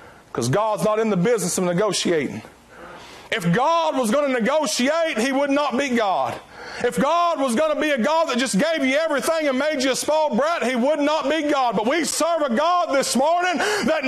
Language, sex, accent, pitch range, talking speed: English, male, American, 215-290 Hz, 215 wpm